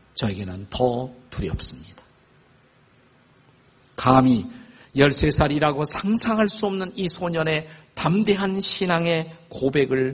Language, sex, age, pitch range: Korean, male, 50-69, 125-175 Hz